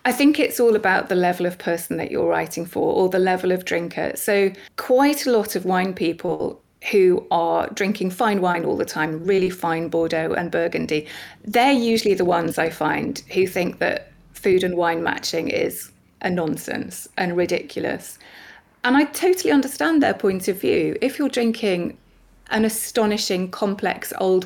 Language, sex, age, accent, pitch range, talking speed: English, female, 30-49, British, 180-225 Hz, 175 wpm